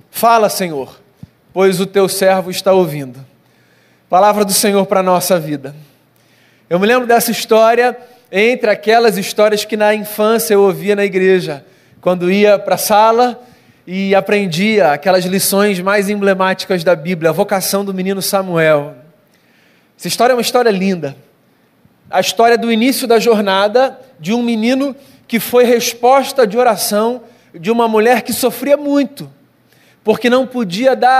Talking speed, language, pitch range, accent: 150 wpm, Portuguese, 190-240 Hz, Brazilian